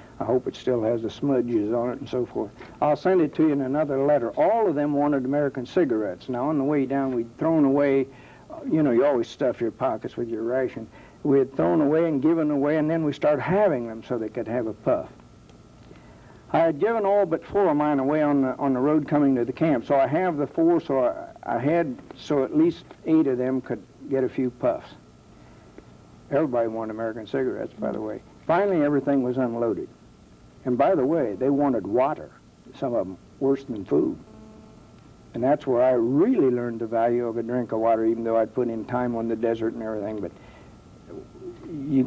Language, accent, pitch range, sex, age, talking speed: English, American, 120-155 Hz, male, 60-79, 215 wpm